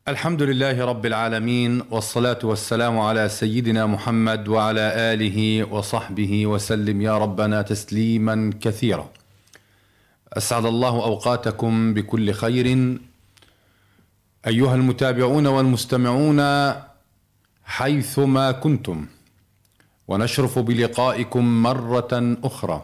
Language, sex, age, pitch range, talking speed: Arabic, male, 40-59, 110-130 Hz, 80 wpm